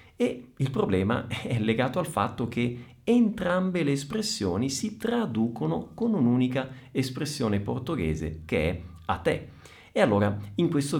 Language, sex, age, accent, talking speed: Italian, male, 50-69, native, 135 wpm